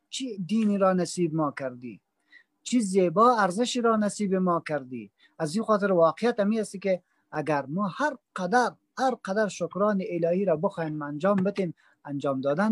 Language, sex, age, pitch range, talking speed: English, male, 40-59, 135-200 Hz, 160 wpm